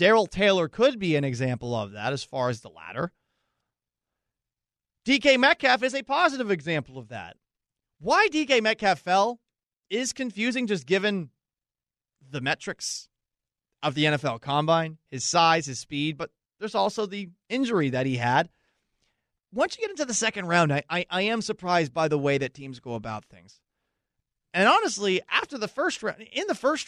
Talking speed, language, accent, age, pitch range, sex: 170 wpm, English, American, 30-49, 135-200 Hz, male